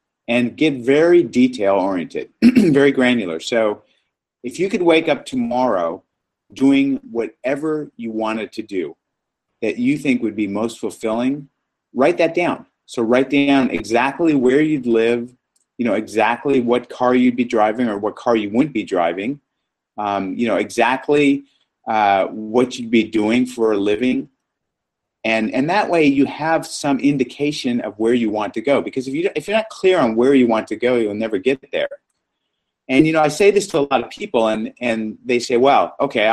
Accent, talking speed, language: American, 185 wpm, English